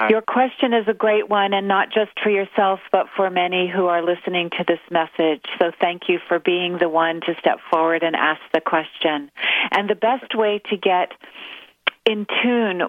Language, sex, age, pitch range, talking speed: English, female, 40-59, 170-205 Hz, 195 wpm